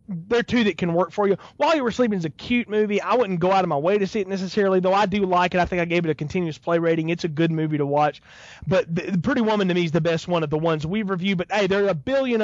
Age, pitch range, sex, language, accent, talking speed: 30-49, 190-255 Hz, male, English, American, 330 wpm